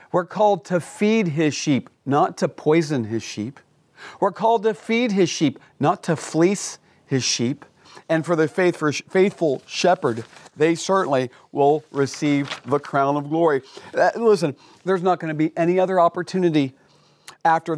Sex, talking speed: male, 150 wpm